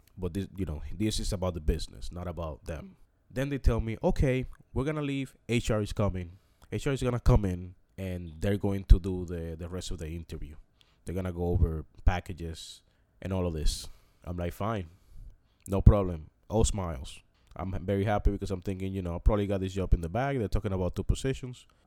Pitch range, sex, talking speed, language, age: 90-120 Hz, male, 215 wpm, English, 20-39